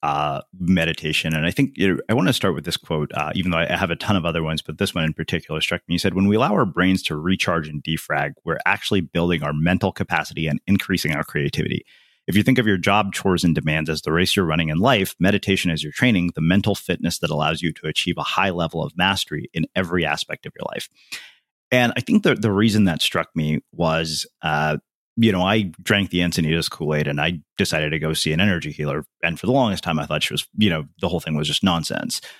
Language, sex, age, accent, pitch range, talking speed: English, male, 30-49, American, 80-105 Hz, 245 wpm